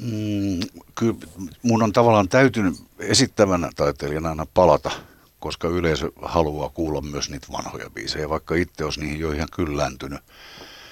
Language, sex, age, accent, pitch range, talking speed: Finnish, male, 60-79, native, 75-105 Hz, 130 wpm